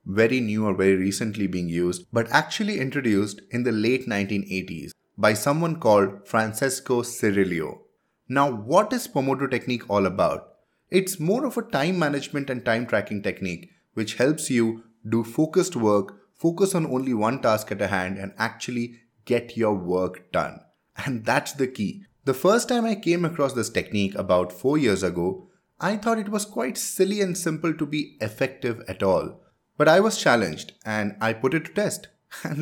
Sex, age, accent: male, 20-39, Indian